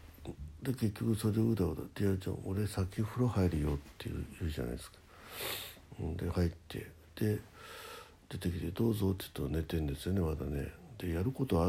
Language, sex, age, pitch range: Japanese, male, 60-79, 80-95 Hz